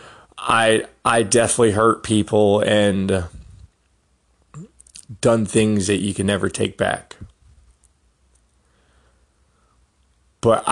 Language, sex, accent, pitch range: English, male, American, 80-110 Hz